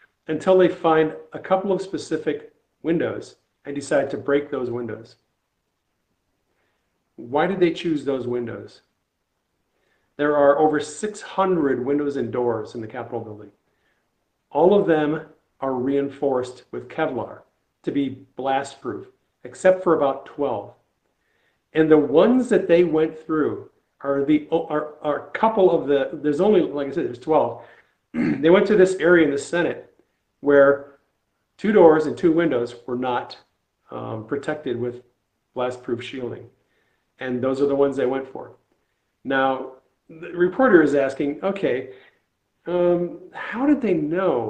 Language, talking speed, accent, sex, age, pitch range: English, 145 wpm, American, male, 50-69, 135-175 Hz